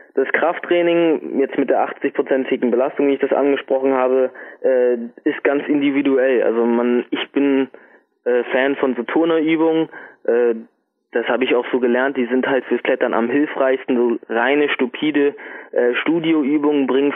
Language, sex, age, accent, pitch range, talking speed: German, male, 20-39, German, 125-145 Hz, 155 wpm